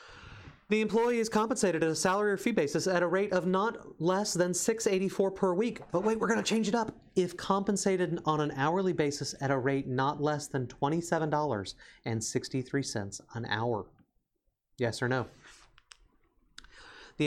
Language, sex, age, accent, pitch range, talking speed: English, male, 30-49, American, 135-185 Hz, 165 wpm